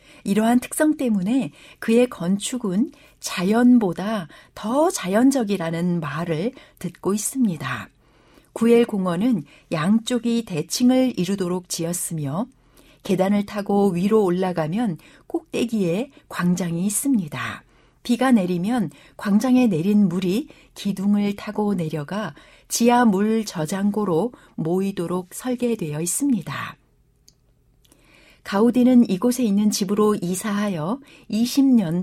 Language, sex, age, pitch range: Korean, female, 60-79, 180-240 Hz